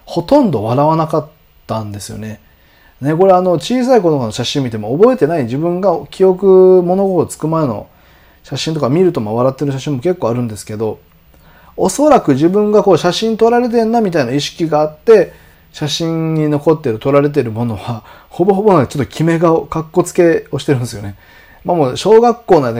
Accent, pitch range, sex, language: native, 115-185 Hz, male, Japanese